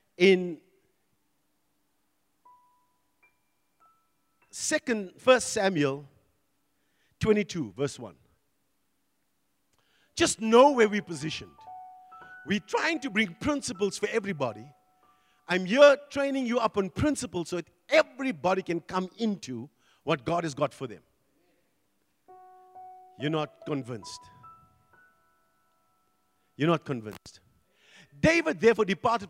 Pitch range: 145-210 Hz